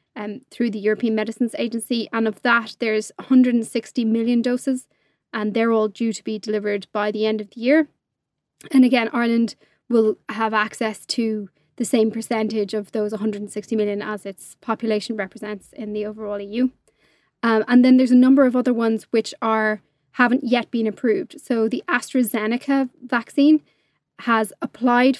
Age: 20-39